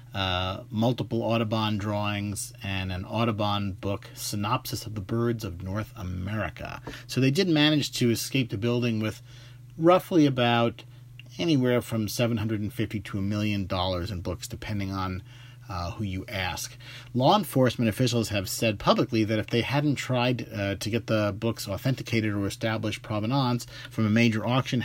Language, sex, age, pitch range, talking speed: English, male, 40-59, 105-125 Hz, 155 wpm